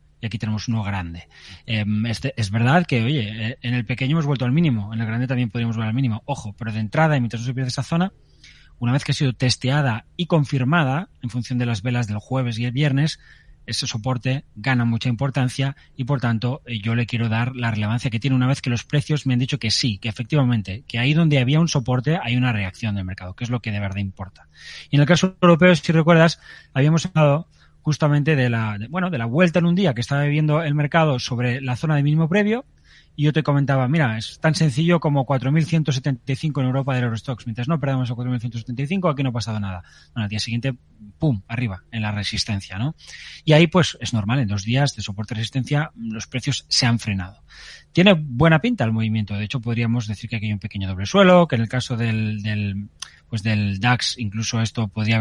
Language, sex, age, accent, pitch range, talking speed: Spanish, male, 20-39, Spanish, 110-145 Hz, 230 wpm